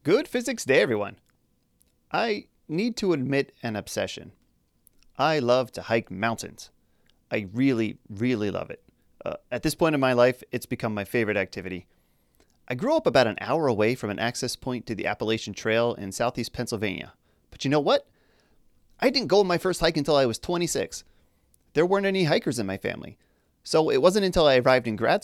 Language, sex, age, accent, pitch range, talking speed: English, male, 30-49, American, 110-150 Hz, 190 wpm